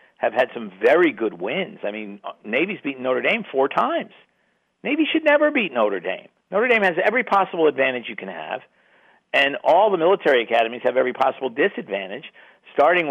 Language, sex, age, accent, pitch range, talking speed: English, male, 50-69, American, 115-190 Hz, 180 wpm